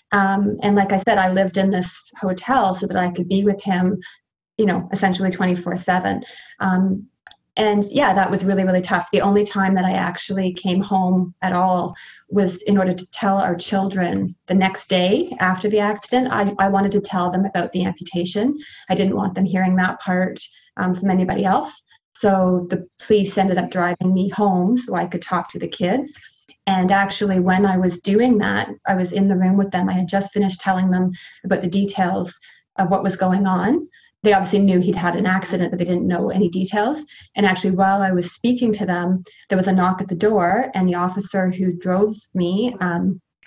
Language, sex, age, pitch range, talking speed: English, female, 20-39, 185-200 Hz, 205 wpm